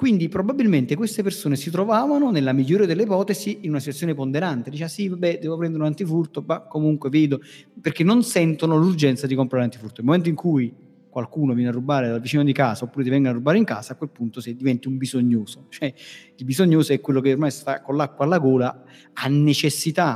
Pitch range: 135-180 Hz